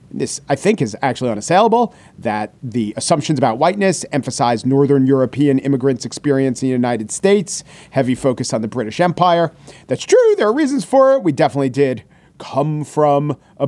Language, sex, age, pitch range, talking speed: English, male, 40-59, 135-175 Hz, 170 wpm